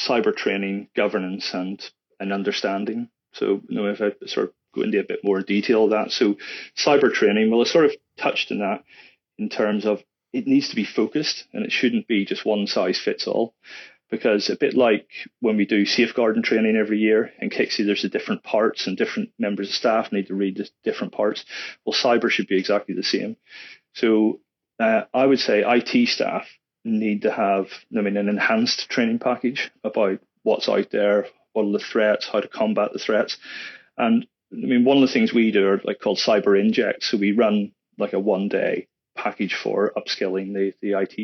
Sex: male